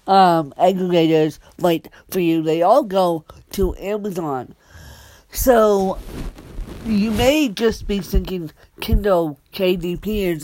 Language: English